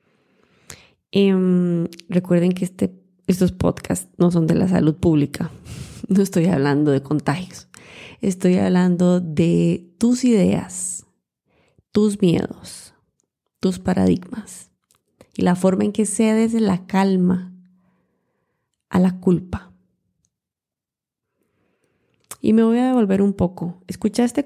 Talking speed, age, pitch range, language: 110 wpm, 20-39, 175-210 Hz, Spanish